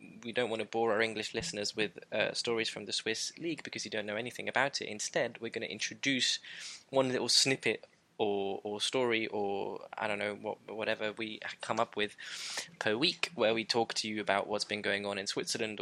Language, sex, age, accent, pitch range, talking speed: English, male, 10-29, British, 100-115 Hz, 215 wpm